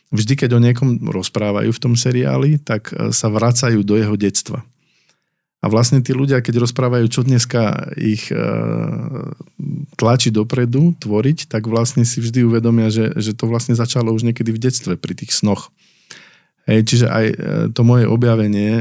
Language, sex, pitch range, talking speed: Slovak, male, 105-125 Hz, 155 wpm